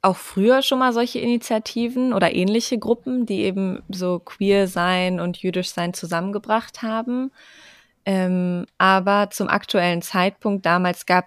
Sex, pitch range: female, 175-210 Hz